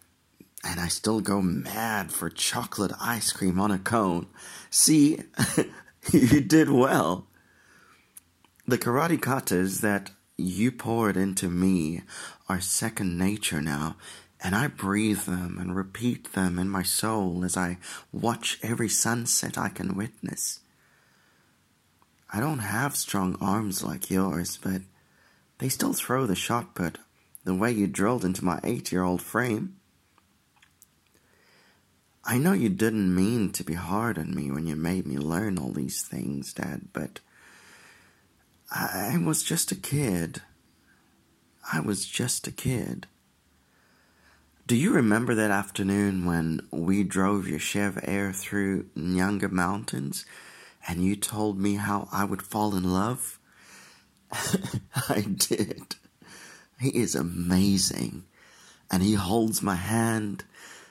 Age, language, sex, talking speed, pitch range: 30-49, English, male, 130 wpm, 90-105 Hz